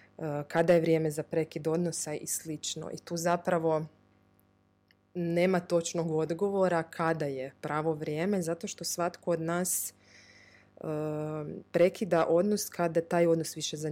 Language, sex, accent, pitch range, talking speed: Croatian, female, native, 150-175 Hz, 135 wpm